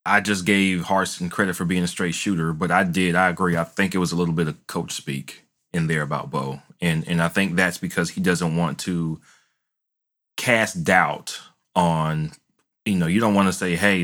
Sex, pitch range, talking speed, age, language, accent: male, 85-100 Hz, 215 wpm, 30-49, English, American